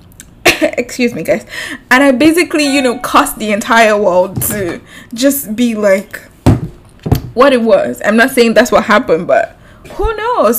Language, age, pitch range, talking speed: English, 20-39, 215-270 Hz, 160 wpm